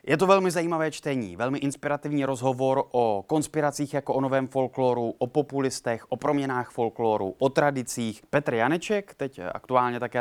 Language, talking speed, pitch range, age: Czech, 155 wpm, 115-150 Hz, 20-39